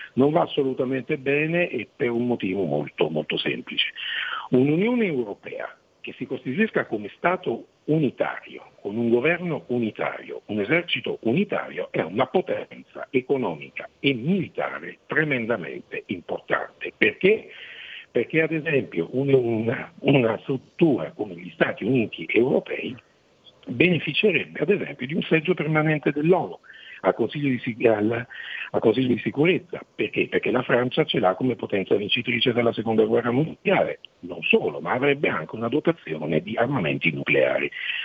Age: 60-79